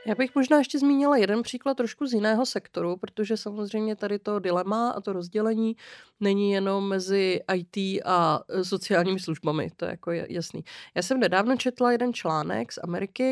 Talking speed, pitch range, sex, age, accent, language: 170 wpm, 180-225 Hz, female, 30-49, native, Czech